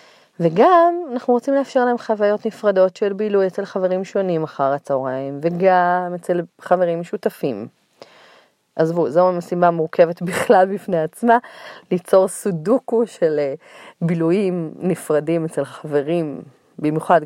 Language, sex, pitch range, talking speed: Hebrew, female, 150-200 Hz, 115 wpm